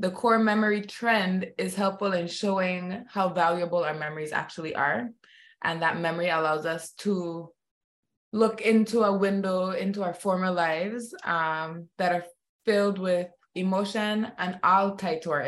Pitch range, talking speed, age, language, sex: 170-205 Hz, 150 wpm, 20-39, English, female